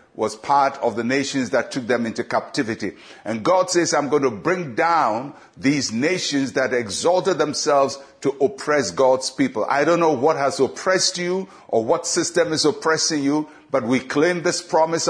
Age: 60-79